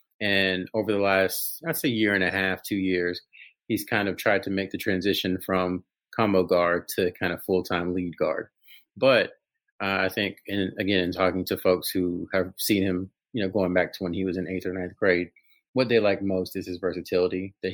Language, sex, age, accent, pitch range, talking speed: English, male, 30-49, American, 90-100 Hz, 210 wpm